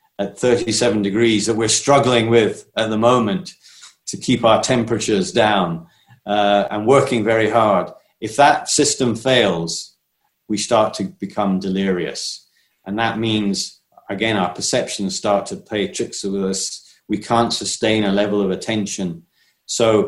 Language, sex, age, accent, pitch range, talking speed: English, male, 40-59, British, 100-120 Hz, 145 wpm